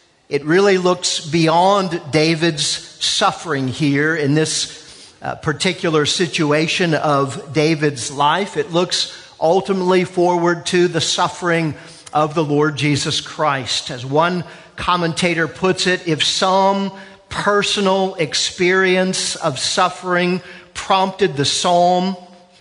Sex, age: male, 50-69